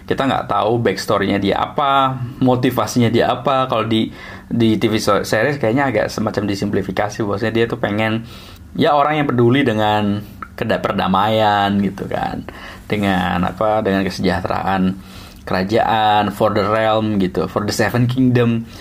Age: 20-39